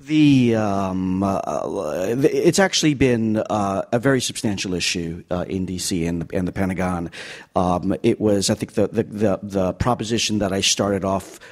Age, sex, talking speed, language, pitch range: 40-59, male, 165 wpm, English, 95-110 Hz